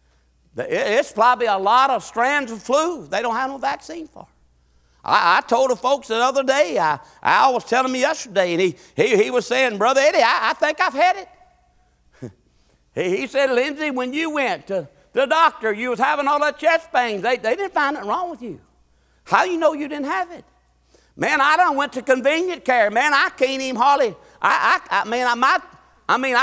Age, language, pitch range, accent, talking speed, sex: 50-69, English, 240-320 Hz, American, 215 wpm, male